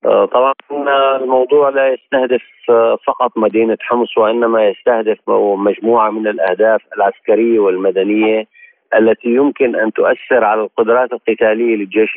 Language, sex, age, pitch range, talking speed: Arabic, male, 40-59, 110-125 Hz, 110 wpm